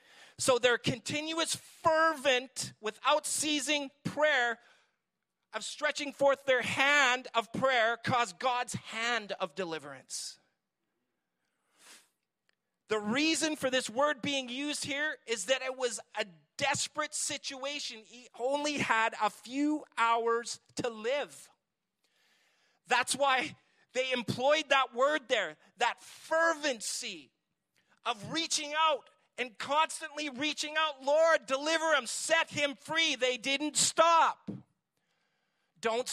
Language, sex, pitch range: English, male, 235-305 Hz